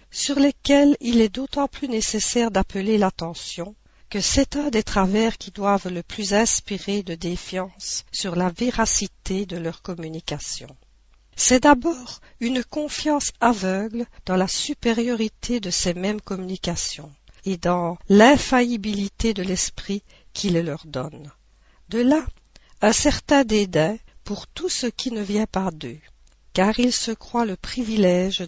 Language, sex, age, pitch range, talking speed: French, female, 50-69, 175-240 Hz, 140 wpm